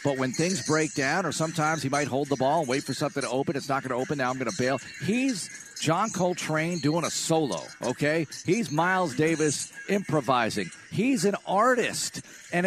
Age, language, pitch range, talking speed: 50-69, English, 135-180 Hz, 205 wpm